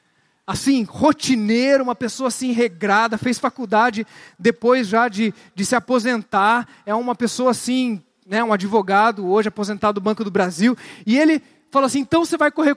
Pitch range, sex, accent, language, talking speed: 215-270 Hz, male, Brazilian, Portuguese, 165 wpm